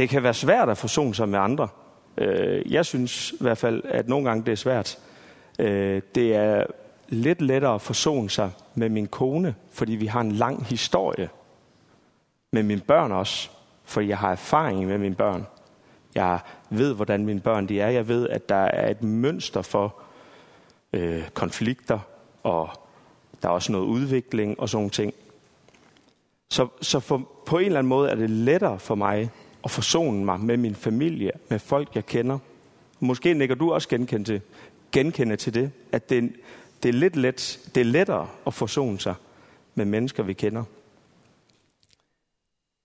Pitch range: 105-135 Hz